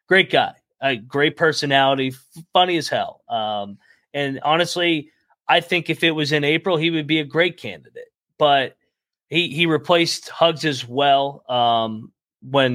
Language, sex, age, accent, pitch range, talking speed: English, male, 20-39, American, 125-150 Hz, 155 wpm